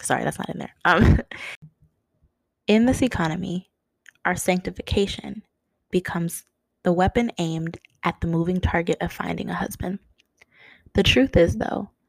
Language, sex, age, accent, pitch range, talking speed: English, female, 20-39, American, 165-195 Hz, 135 wpm